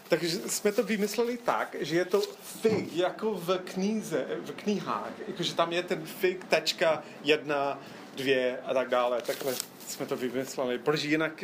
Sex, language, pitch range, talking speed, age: male, Czech, 145-195 Hz, 155 wpm, 30-49